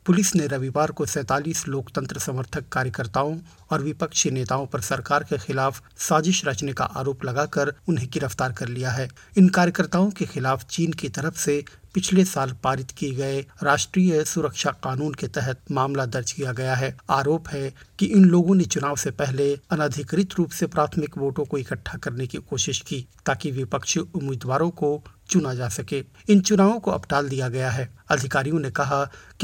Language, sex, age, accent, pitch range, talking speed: Hindi, male, 50-69, native, 130-165 Hz, 175 wpm